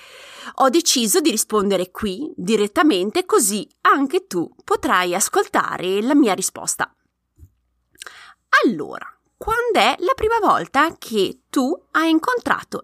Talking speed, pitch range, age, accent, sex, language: 110 wpm, 190-315 Hz, 30-49, native, female, Italian